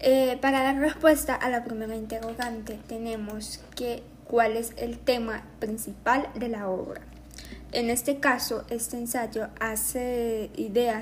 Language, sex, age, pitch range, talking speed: Spanish, female, 20-39, 215-250 Hz, 135 wpm